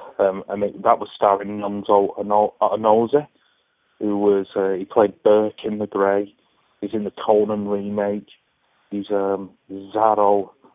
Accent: British